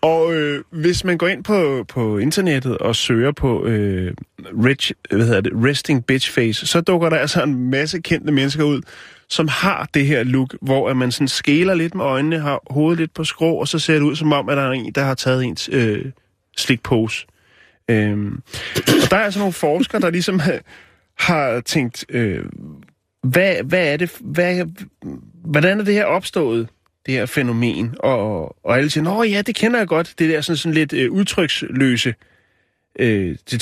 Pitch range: 125-170 Hz